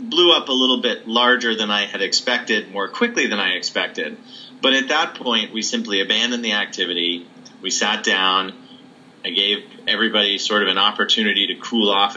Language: English